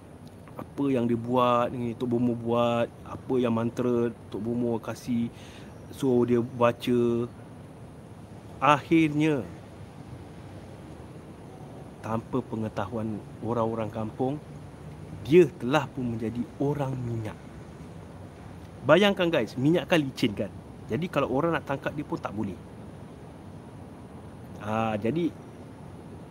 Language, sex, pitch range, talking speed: Malay, male, 115-160 Hz, 100 wpm